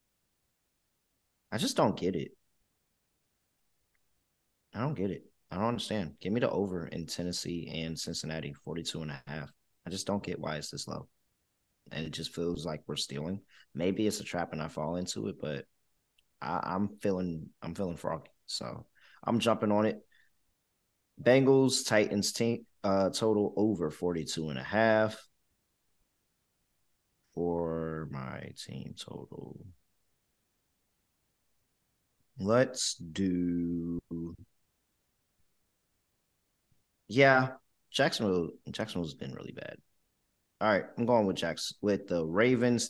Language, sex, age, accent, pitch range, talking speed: English, male, 30-49, American, 80-105 Hz, 125 wpm